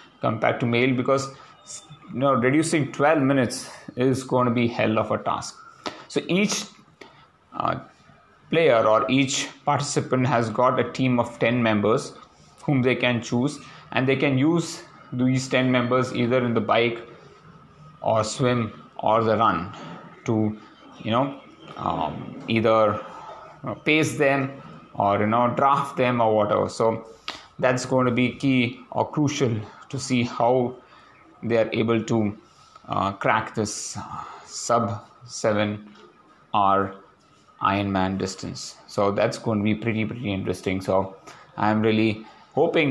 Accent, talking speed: Indian, 140 wpm